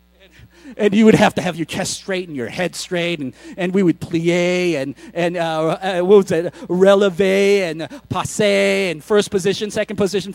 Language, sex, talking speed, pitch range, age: English, male, 170 wpm, 175-230 Hz, 30-49